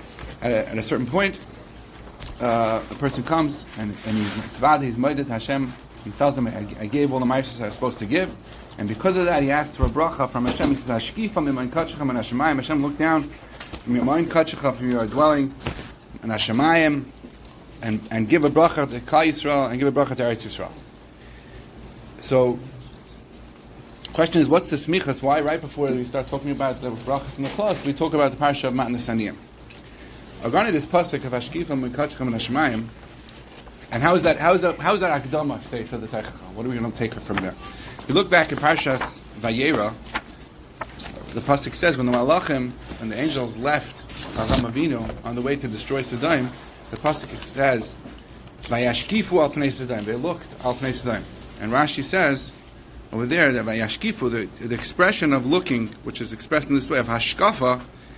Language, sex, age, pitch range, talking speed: English, male, 30-49, 115-150 Hz, 185 wpm